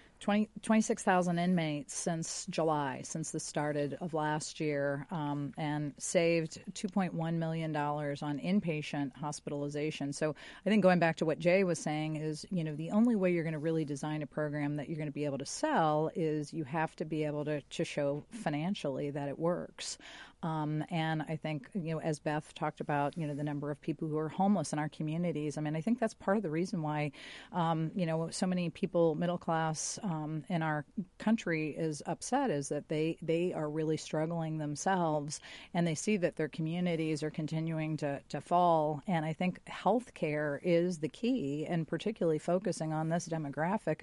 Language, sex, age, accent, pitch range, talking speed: English, female, 40-59, American, 150-175 Hz, 200 wpm